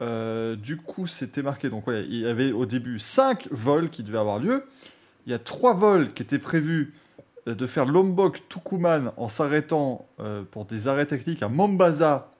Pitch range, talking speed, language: 125-185 Hz, 185 wpm, French